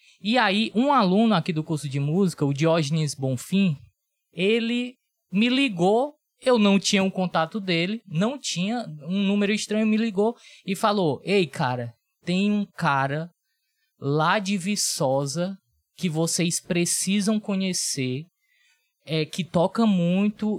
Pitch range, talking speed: 165-220 Hz, 135 wpm